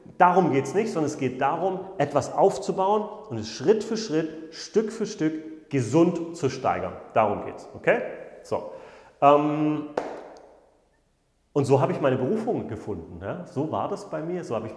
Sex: male